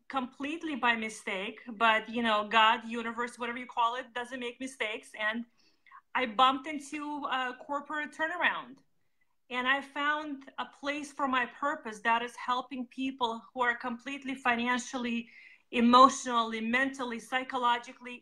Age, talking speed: 30-49, 135 wpm